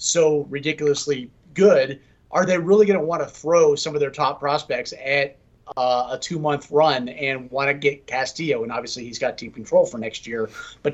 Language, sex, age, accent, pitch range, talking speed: English, male, 30-49, American, 135-160 Hz, 195 wpm